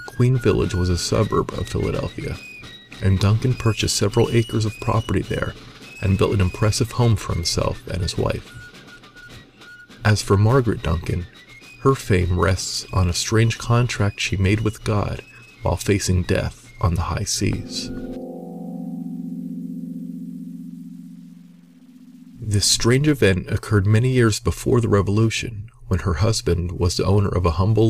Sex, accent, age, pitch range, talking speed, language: male, American, 40-59, 95-120 Hz, 140 wpm, English